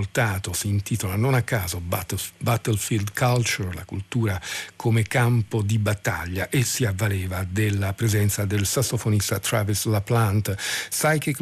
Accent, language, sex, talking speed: native, Italian, male, 120 wpm